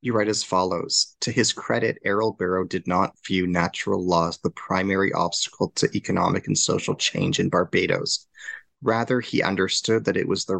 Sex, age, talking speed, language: male, 30-49, 175 wpm, English